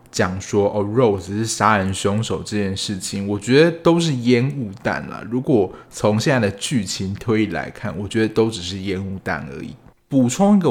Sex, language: male, Chinese